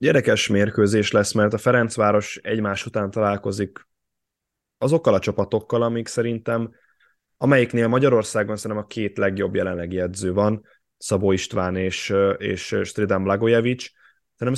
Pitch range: 100-115 Hz